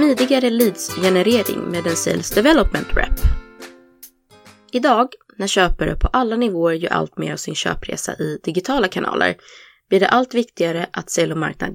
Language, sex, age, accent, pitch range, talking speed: Swedish, female, 20-39, native, 135-210 Hz, 155 wpm